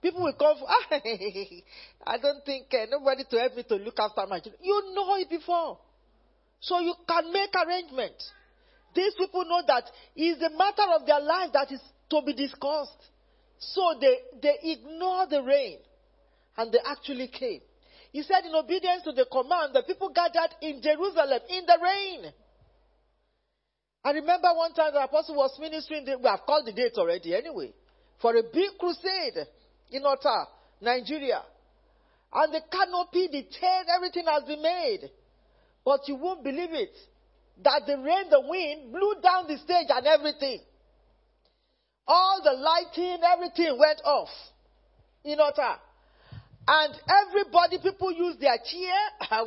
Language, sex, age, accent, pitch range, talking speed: English, male, 40-59, Nigerian, 285-370 Hz, 155 wpm